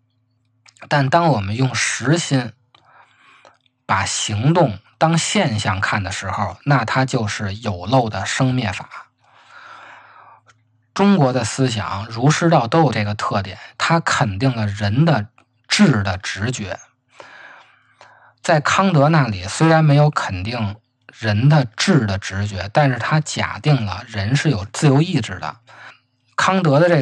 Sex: male